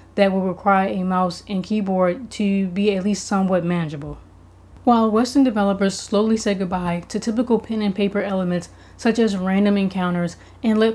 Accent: American